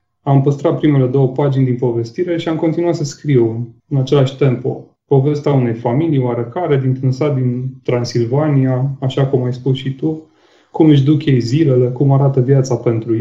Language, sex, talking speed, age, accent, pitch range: Romanian, male, 175 wpm, 20-39, native, 120-140 Hz